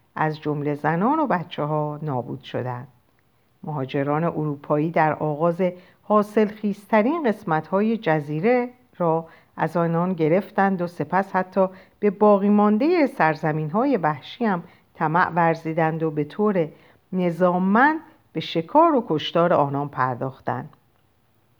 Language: Persian